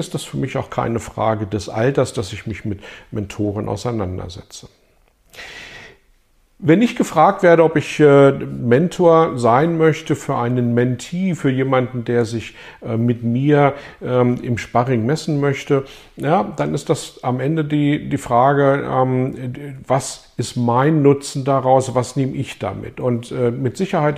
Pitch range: 120-145 Hz